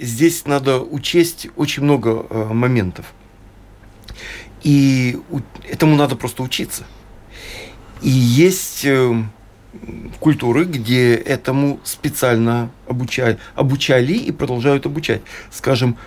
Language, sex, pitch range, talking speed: Russian, male, 115-150 Hz, 85 wpm